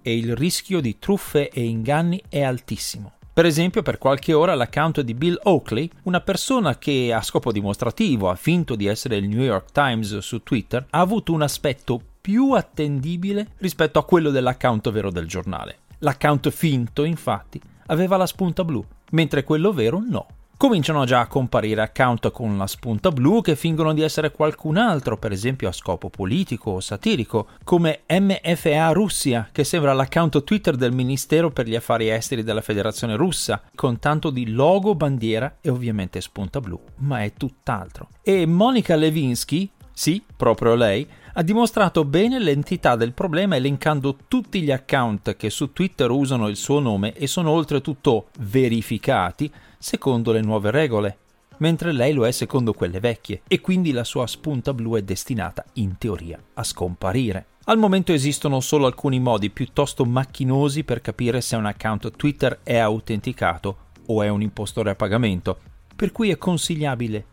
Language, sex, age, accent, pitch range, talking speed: Italian, male, 40-59, native, 110-160 Hz, 165 wpm